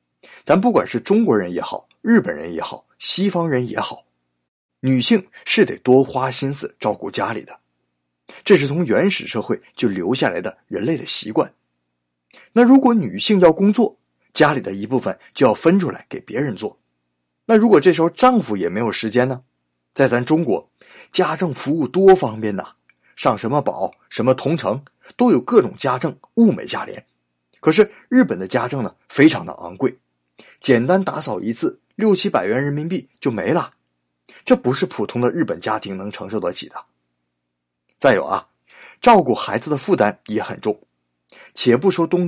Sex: male